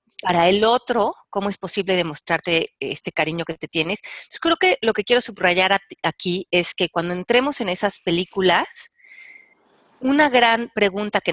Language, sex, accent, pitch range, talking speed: Spanish, female, Mexican, 170-235 Hz, 165 wpm